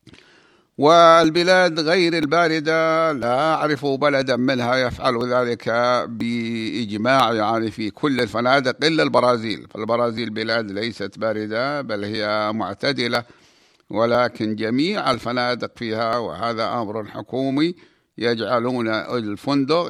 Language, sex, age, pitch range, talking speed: Arabic, male, 50-69, 110-140 Hz, 95 wpm